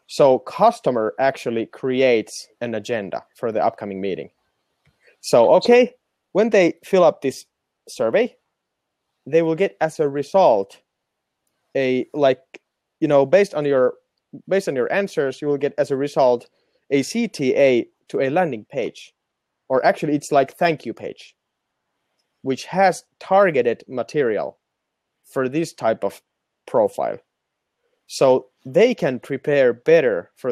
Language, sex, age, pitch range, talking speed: Finnish, male, 30-49, 125-190 Hz, 135 wpm